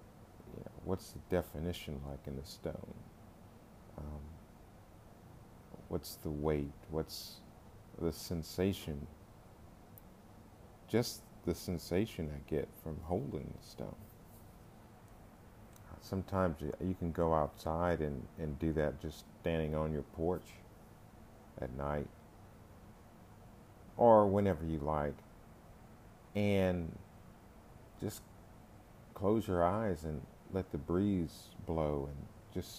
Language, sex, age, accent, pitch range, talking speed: English, male, 50-69, American, 80-100 Hz, 100 wpm